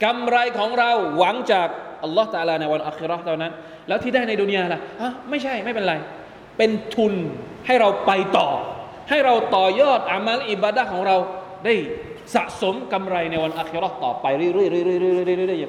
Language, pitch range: Thai, 170-215 Hz